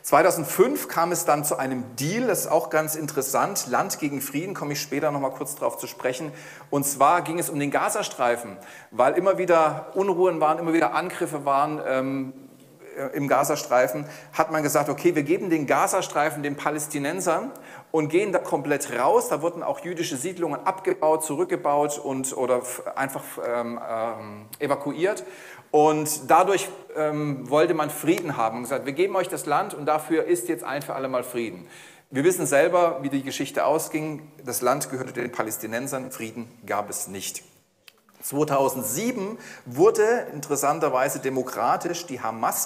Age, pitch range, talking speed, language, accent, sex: 40-59, 130-165 Hz, 160 wpm, German, German, male